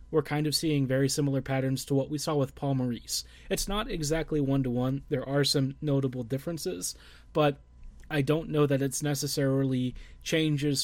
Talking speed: 170 wpm